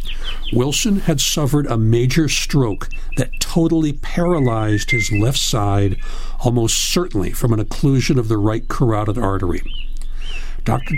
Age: 60-79